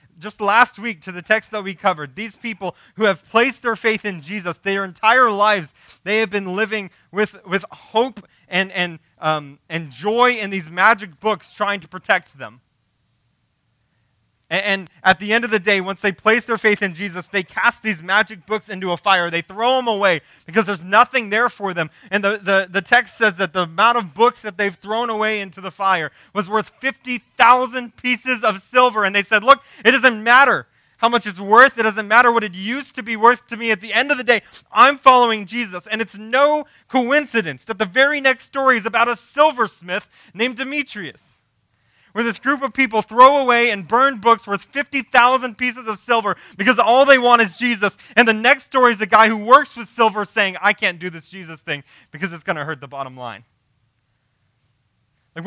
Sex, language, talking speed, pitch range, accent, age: male, English, 205 wpm, 180-235 Hz, American, 20-39